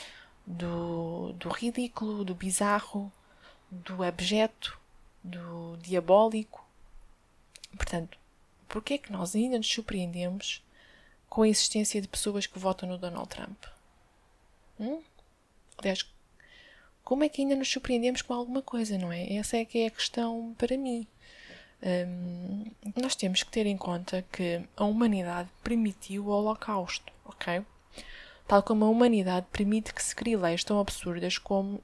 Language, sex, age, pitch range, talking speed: Portuguese, female, 20-39, 190-235 Hz, 140 wpm